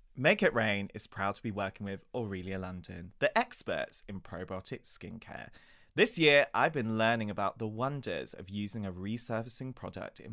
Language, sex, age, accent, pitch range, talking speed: English, male, 20-39, British, 100-135 Hz, 175 wpm